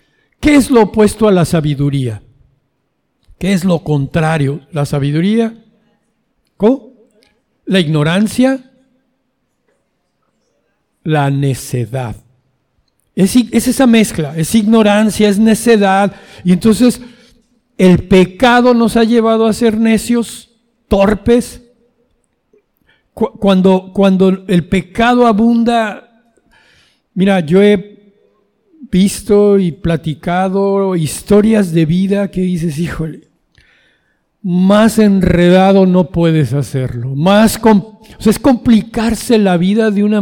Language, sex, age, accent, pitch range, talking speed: Spanish, male, 60-79, Mexican, 175-225 Hz, 105 wpm